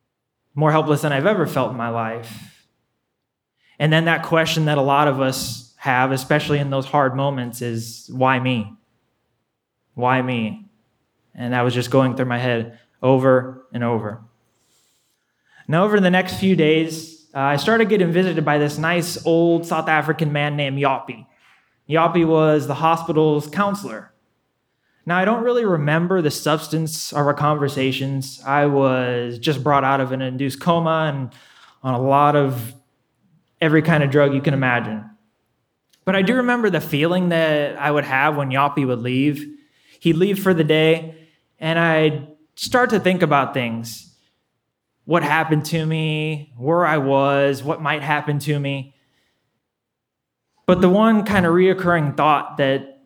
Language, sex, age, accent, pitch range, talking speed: English, male, 20-39, American, 130-160 Hz, 160 wpm